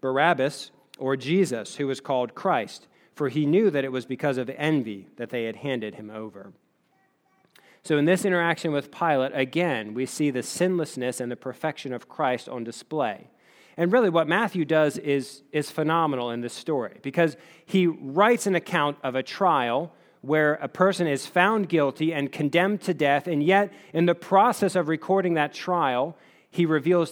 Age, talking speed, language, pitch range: 40-59, 175 wpm, English, 130-175 Hz